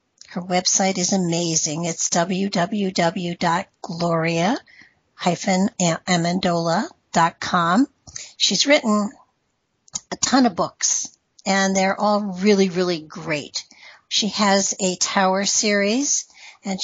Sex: female